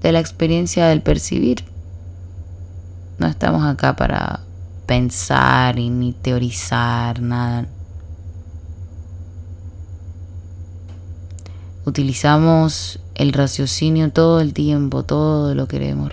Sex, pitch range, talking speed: female, 90-140 Hz, 85 wpm